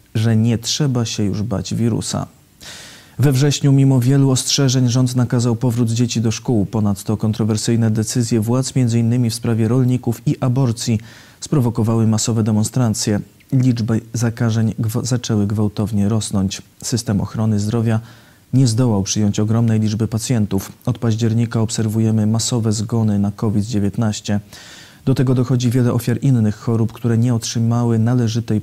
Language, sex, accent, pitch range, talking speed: Polish, male, native, 105-120 Hz, 130 wpm